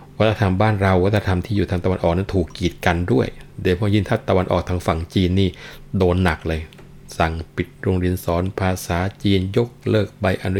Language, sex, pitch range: Thai, male, 85-110 Hz